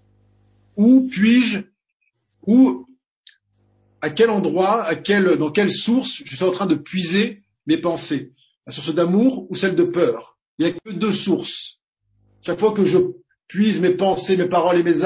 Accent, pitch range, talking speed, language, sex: French, 140-195 Hz, 165 wpm, French, male